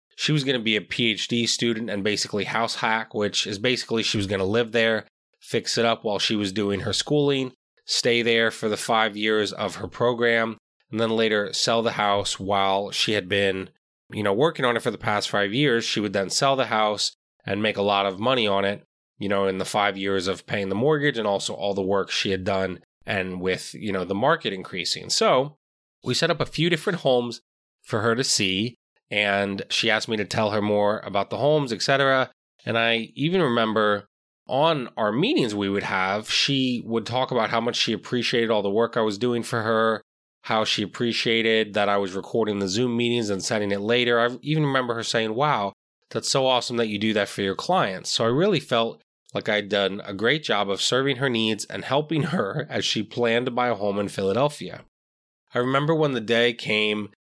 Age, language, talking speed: 20-39, English, 220 wpm